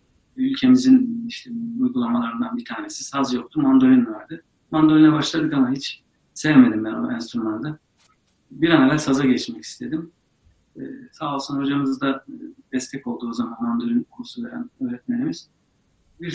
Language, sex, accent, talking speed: Turkish, male, native, 135 wpm